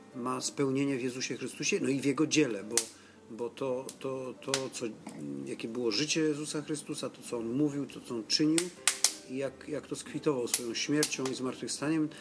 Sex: male